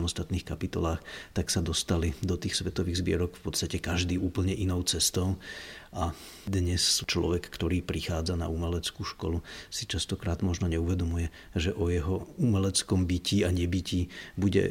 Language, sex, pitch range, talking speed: Czech, male, 85-90 Hz, 145 wpm